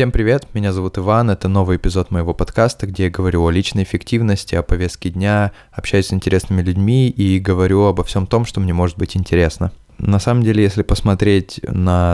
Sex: male